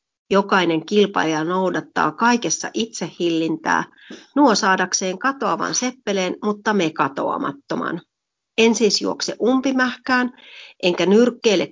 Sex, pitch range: female, 170-225 Hz